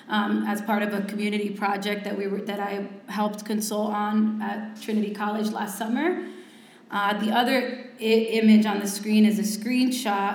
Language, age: English, 20-39